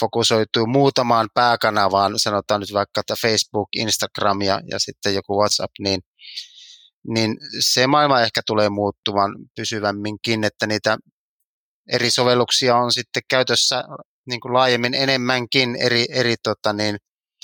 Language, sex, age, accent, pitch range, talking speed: Finnish, male, 30-49, native, 105-125 Hz, 125 wpm